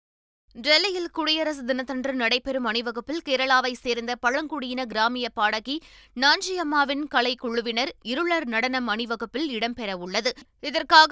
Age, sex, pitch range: 20-39, female, 235-280 Hz